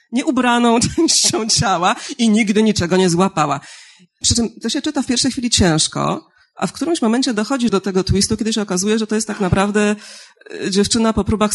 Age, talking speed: 40-59, 185 wpm